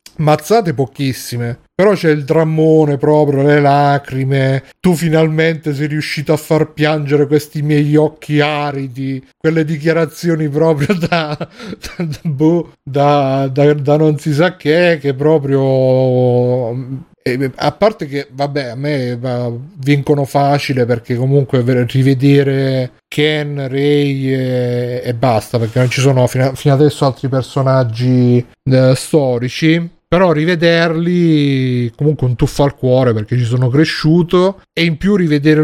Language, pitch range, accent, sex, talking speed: Italian, 130-160 Hz, native, male, 125 wpm